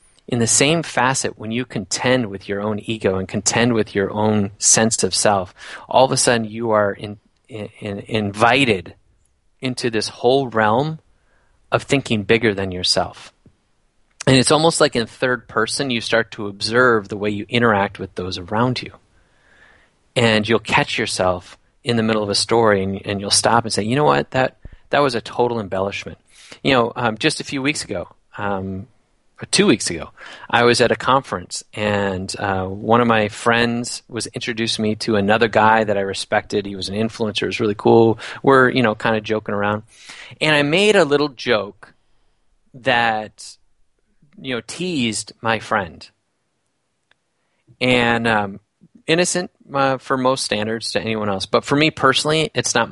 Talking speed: 180 wpm